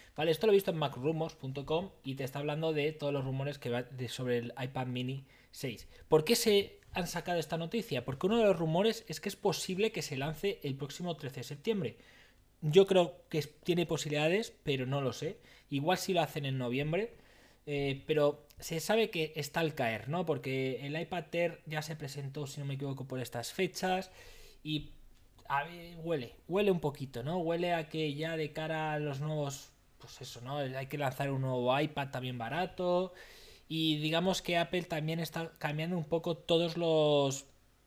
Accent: Spanish